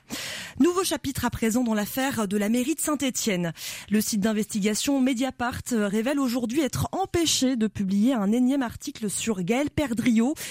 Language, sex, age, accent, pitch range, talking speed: French, female, 20-39, French, 210-275 Hz, 155 wpm